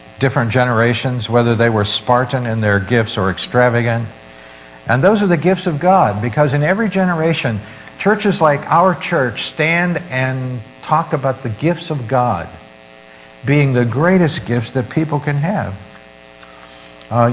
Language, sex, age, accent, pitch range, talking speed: English, male, 60-79, American, 105-165 Hz, 150 wpm